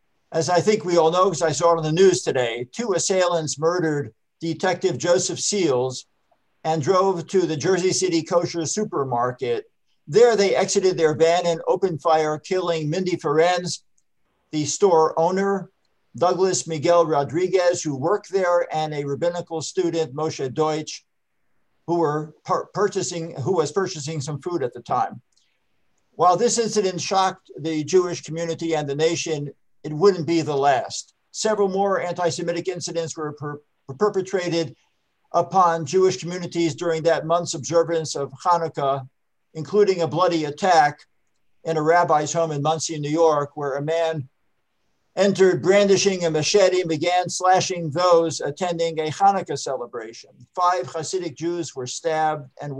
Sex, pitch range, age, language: male, 155-180 Hz, 50-69, English